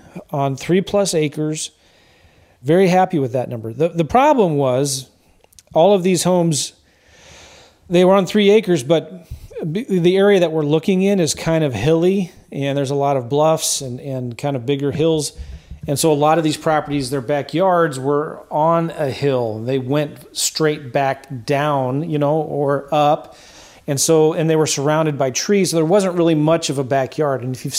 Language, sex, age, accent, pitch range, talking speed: English, male, 40-59, American, 135-165 Hz, 185 wpm